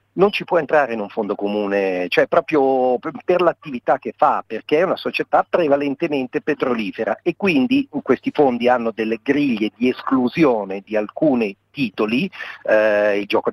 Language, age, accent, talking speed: Italian, 50-69, native, 155 wpm